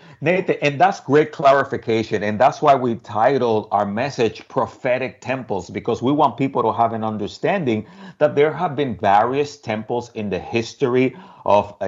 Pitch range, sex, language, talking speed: 110-150 Hz, male, English, 160 wpm